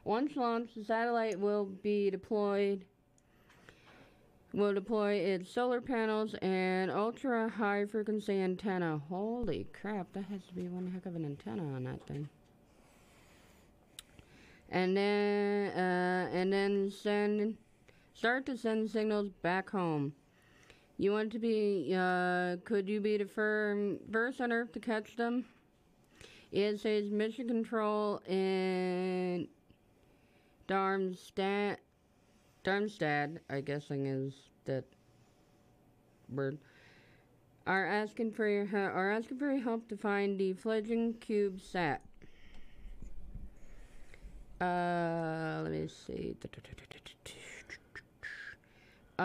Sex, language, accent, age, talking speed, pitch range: female, English, American, 30-49, 110 wpm, 180-215 Hz